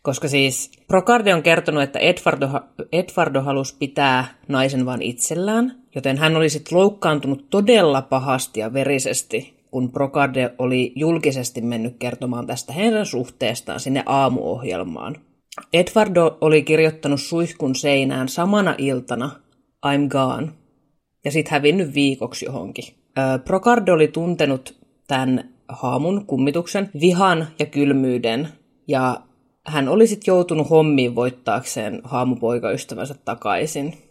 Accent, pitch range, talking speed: native, 130-190 Hz, 115 wpm